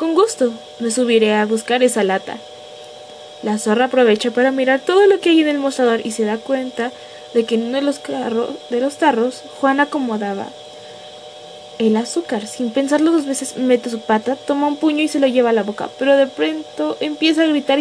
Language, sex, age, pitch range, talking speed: Spanish, female, 20-39, 210-290 Hz, 200 wpm